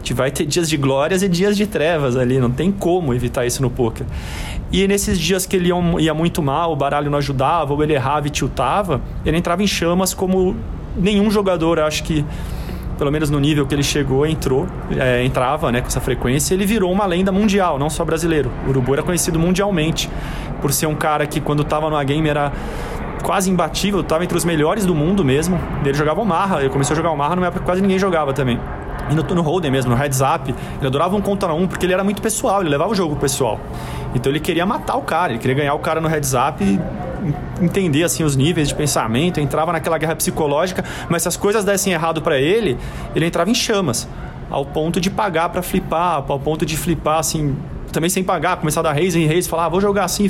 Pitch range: 145-180 Hz